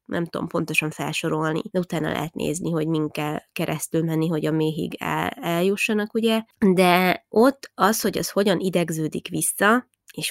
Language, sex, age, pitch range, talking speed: Hungarian, female, 20-39, 165-195 Hz, 165 wpm